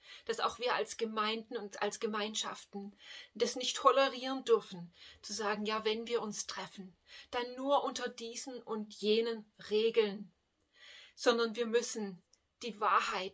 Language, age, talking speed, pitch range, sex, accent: German, 30-49, 140 wpm, 200-230 Hz, female, German